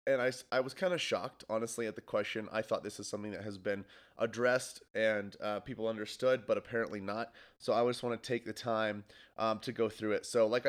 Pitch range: 100-120 Hz